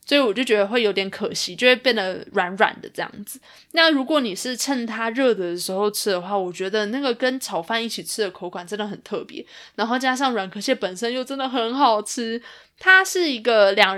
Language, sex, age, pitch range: Chinese, female, 20-39, 195-250 Hz